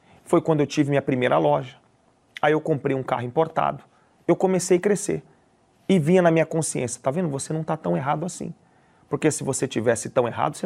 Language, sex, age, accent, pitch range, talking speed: Portuguese, male, 40-59, Brazilian, 140-175 Hz, 210 wpm